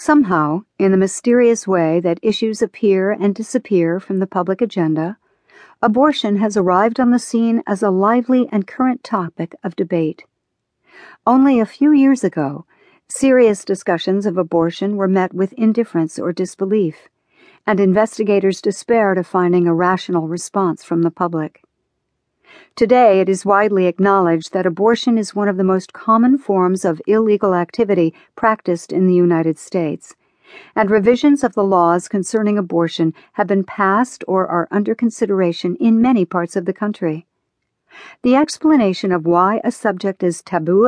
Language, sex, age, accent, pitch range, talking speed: English, female, 60-79, American, 180-225 Hz, 155 wpm